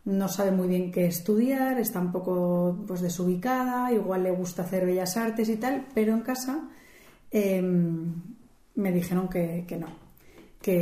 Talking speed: 160 wpm